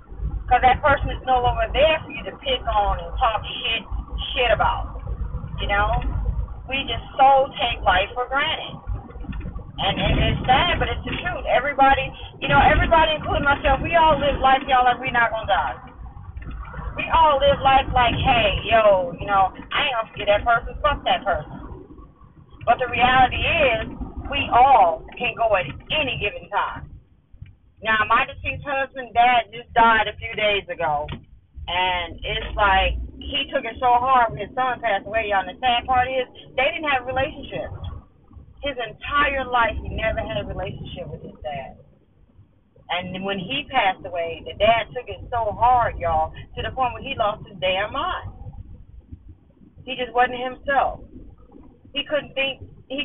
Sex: female